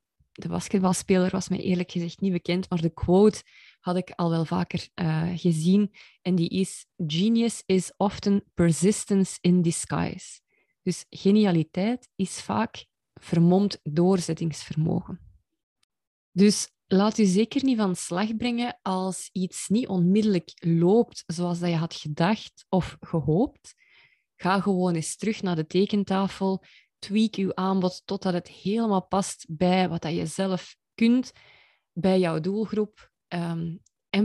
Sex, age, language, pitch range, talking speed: female, 20-39, Dutch, 170-205 Hz, 135 wpm